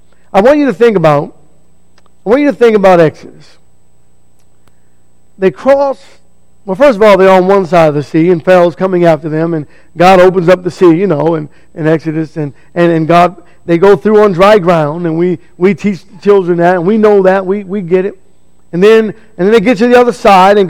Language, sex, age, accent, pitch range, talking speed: English, male, 50-69, American, 150-205 Hz, 230 wpm